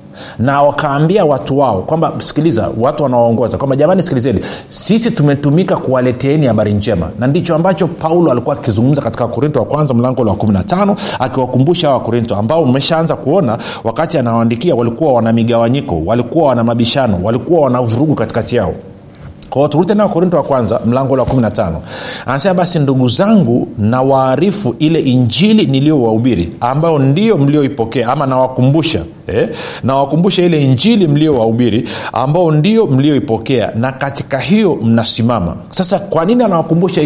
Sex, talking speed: male, 140 wpm